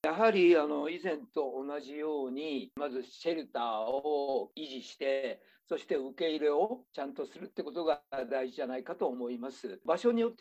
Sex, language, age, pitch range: male, Japanese, 50-69, 130-205 Hz